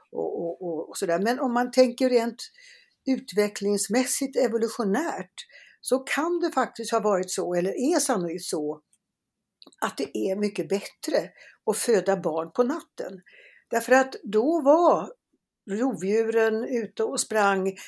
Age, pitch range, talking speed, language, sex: 60-79, 195-265 Hz, 140 wpm, English, female